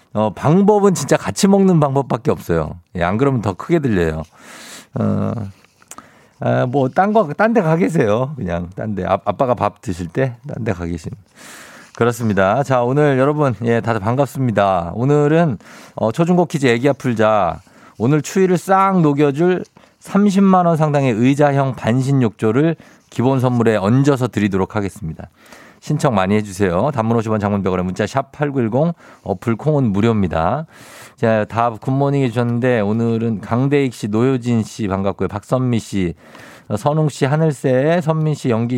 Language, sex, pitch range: Korean, male, 105-150 Hz